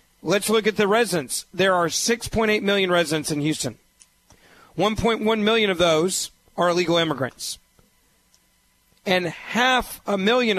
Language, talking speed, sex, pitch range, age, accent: English, 130 wpm, male, 165-215 Hz, 40-59, American